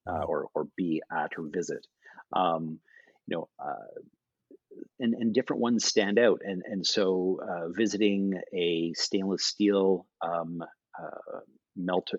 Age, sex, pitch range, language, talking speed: 40-59, male, 90-100 Hz, English, 140 wpm